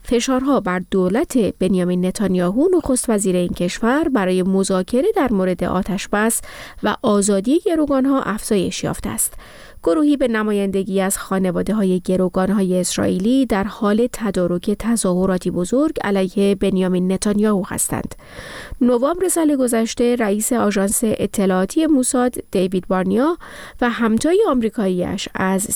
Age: 30-49